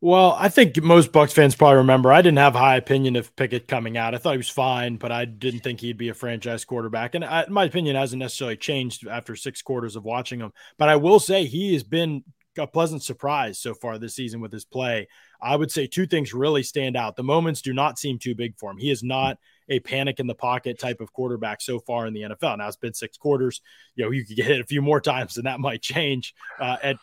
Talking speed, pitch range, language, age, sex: 250 wpm, 120-145 Hz, English, 20-39, male